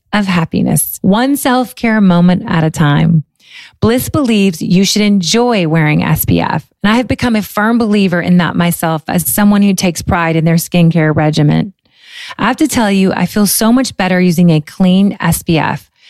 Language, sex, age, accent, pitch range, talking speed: English, female, 30-49, American, 175-225 Hz, 180 wpm